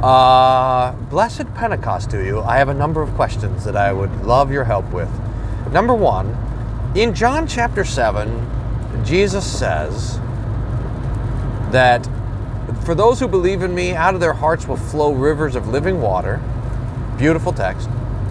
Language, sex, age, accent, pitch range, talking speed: English, male, 40-59, American, 110-130 Hz, 150 wpm